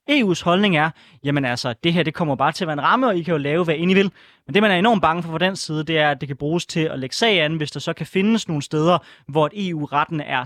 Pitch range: 145-185 Hz